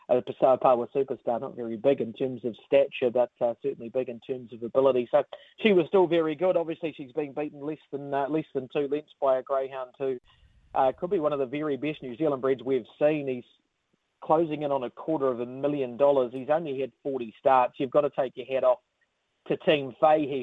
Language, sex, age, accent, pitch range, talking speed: English, male, 40-59, Australian, 130-150 Hz, 225 wpm